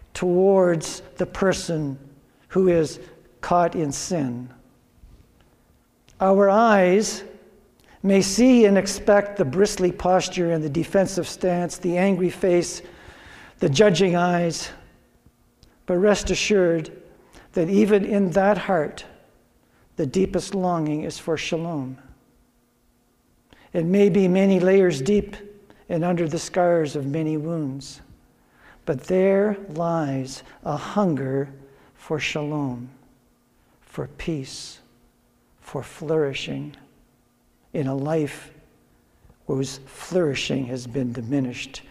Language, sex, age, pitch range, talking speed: English, male, 60-79, 140-190 Hz, 105 wpm